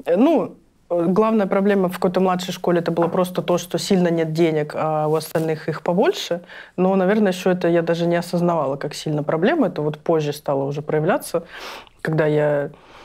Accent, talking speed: native, 180 wpm